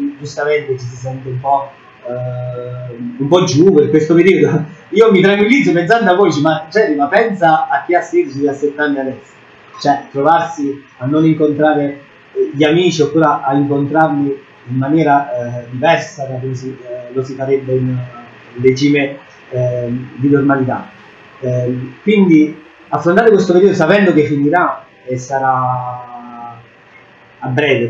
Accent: native